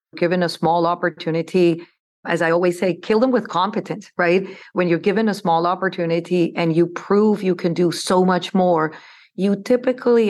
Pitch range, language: 165-180 Hz, English